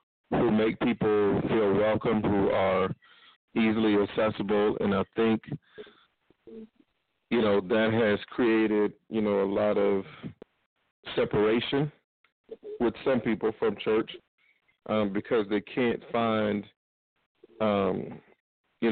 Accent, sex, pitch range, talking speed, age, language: American, male, 95-110 Hz, 110 wpm, 40-59, English